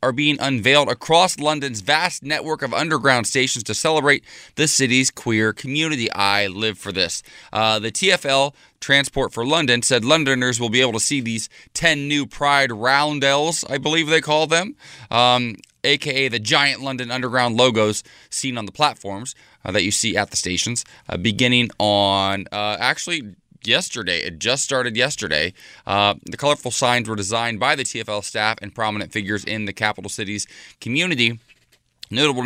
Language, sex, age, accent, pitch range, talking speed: English, male, 20-39, American, 105-140 Hz, 165 wpm